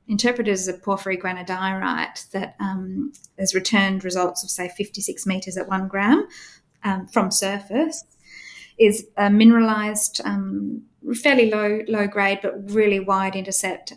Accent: Australian